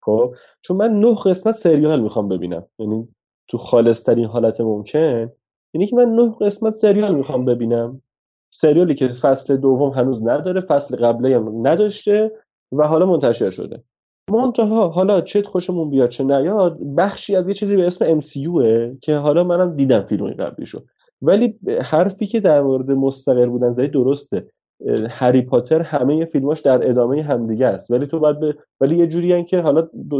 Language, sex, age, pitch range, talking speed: Persian, male, 30-49, 130-195 Hz, 170 wpm